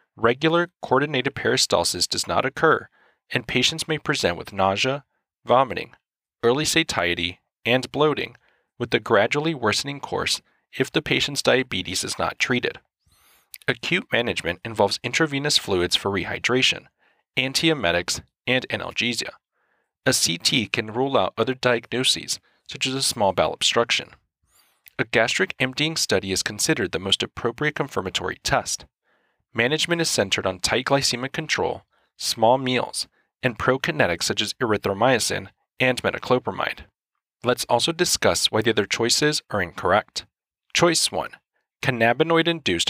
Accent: American